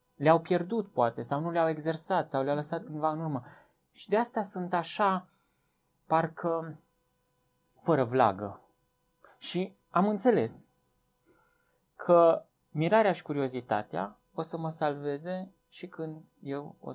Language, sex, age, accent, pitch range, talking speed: Romanian, male, 20-39, native, 125-175 Hz, 125 wpm